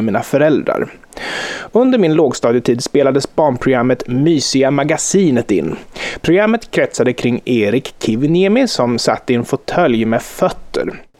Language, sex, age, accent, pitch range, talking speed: English, male, 30-49, Swedish, 130-200 Hz, 125 wpm